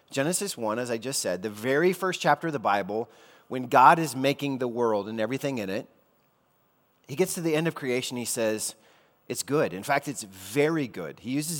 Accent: American